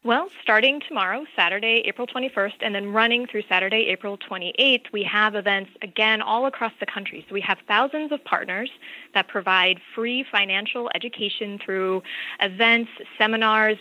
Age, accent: 20-39, American